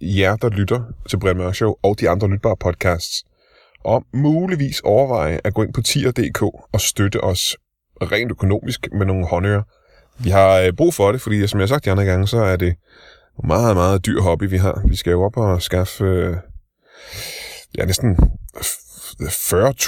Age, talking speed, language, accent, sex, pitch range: 20-39, 180 wpm, Danish, native, male, 95-120 Hz